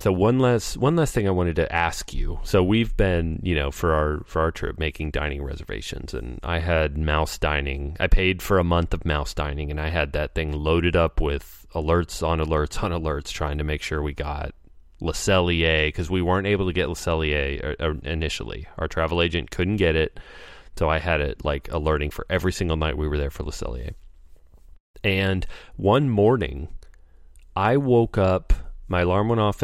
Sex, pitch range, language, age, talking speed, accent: male, 75-95 Hz, English, 30-49, 195 wpm, American